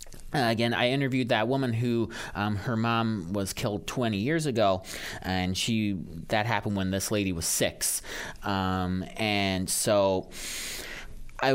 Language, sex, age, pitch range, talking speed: English, male, 30-49, 100-130 Hz, 155 wpm